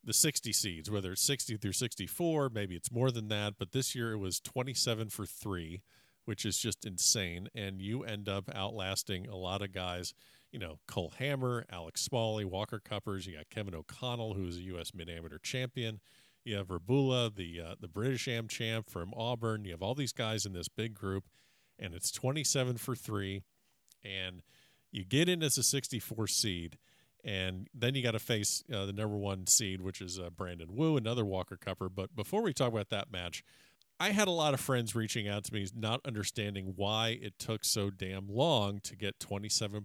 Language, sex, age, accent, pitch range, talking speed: English, male, 40-59, American, 95-125 Hz, 200 wpm